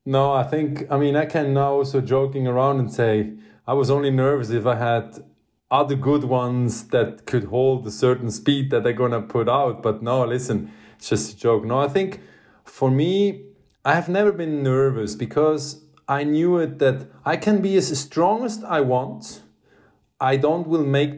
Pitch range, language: 120-155 Hz, English